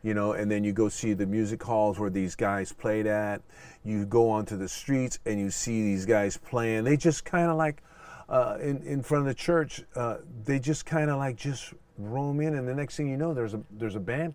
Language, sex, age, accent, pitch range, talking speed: English, male, 50-69, American, 105-145 Hz, 245 wpm